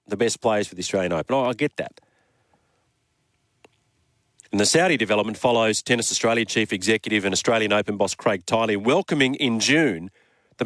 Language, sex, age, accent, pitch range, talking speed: English, male, 40-59, Australian, 110-140 Hz, 170 wpm